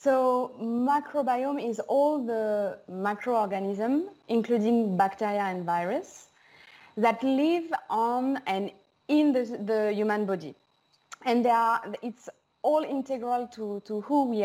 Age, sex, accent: 20-39, female, French